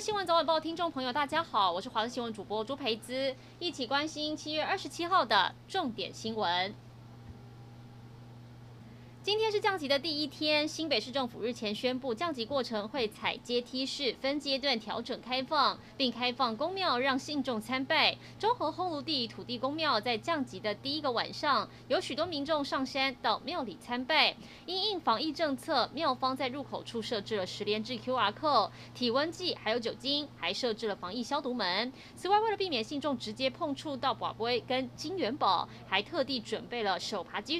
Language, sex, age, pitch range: Chinese, female, 20-39, 220-300 Hz